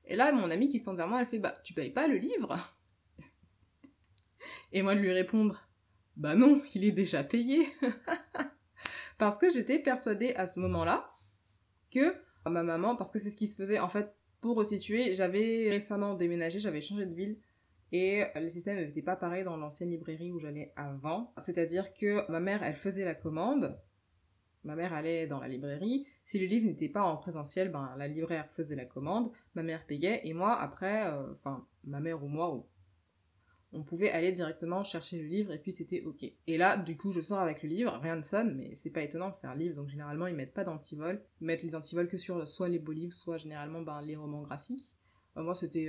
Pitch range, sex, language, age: 150-205 Hz, female, French, 20-39